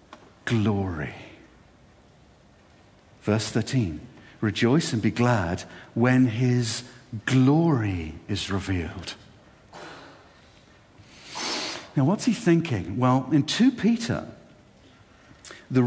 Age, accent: 50-69, British